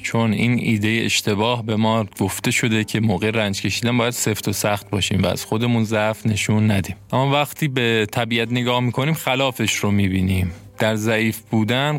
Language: Persian